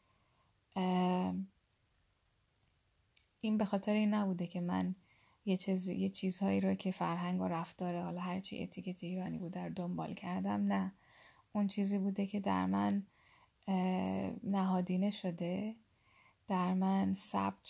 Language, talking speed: Persian, 120 wpm